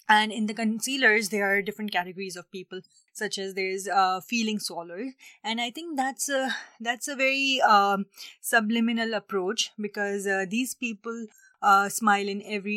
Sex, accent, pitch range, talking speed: female, Indian, 190-220 Hz, 170 wpm